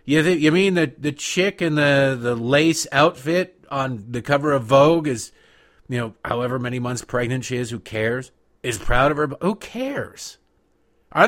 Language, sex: English, male